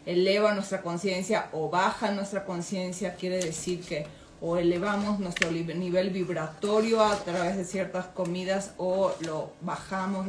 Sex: female